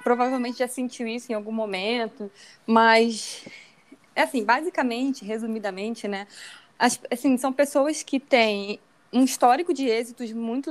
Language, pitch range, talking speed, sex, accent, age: Portuguese, 220-270 Hz, 130 wpm, female, Brazilian, 20-39